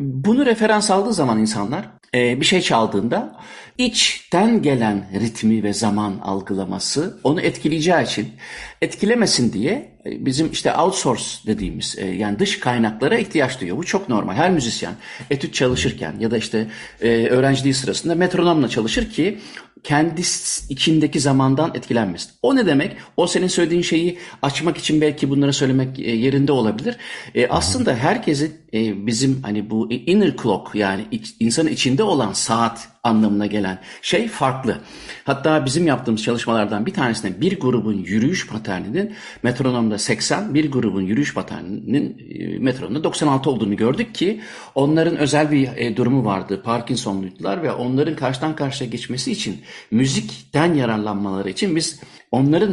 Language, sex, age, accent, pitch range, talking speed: Turkish, male, 50-69, native, 115-165 Hz, 130 wpm